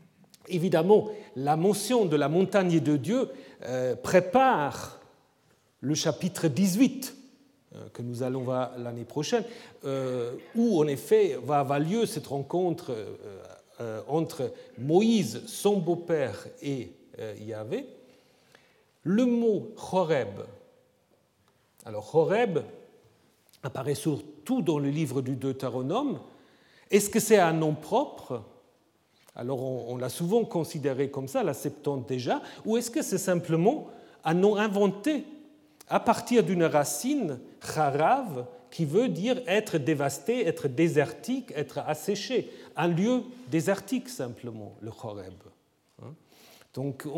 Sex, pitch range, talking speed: male, 140-225 Hz, 120 wpm